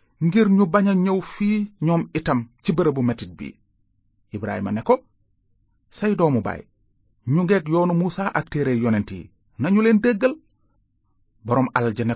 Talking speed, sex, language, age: 115 wpm, male, French, 30-49